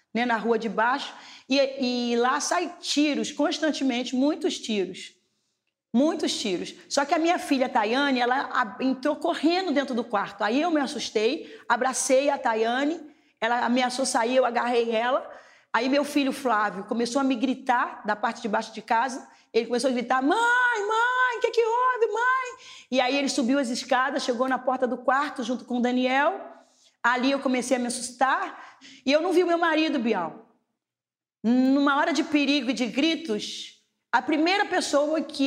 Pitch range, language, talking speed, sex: 245-305 Hz, Portuguese, 180 wpm, female